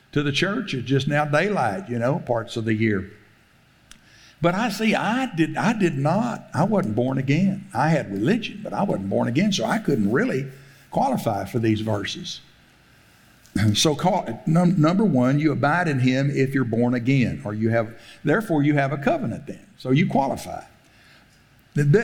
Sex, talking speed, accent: male, 180 wpm, American